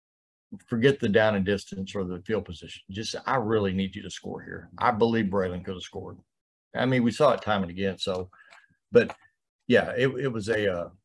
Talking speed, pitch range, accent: 210 wpm, 95-110 Hz, American